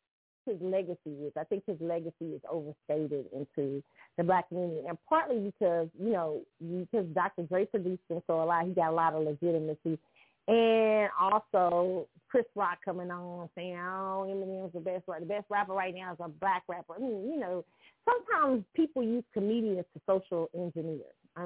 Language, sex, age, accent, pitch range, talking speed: English, female, 30-49, American, 165-215 Hz, 180 wpm